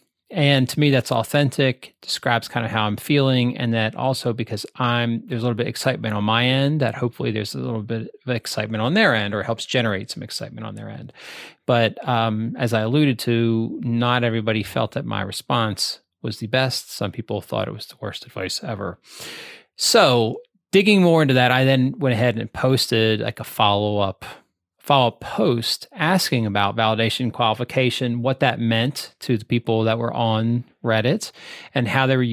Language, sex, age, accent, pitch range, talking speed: English, male, 30-49, American, 110-130 Hz, 190 wpm